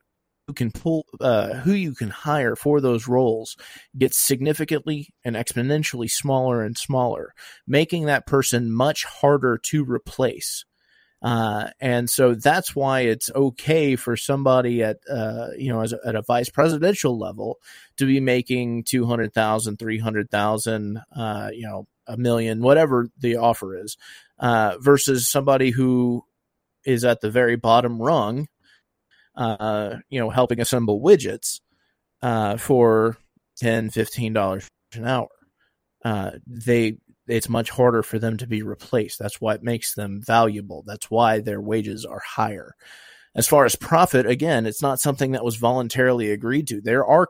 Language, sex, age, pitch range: English, male, 30-49, 115-140 Hz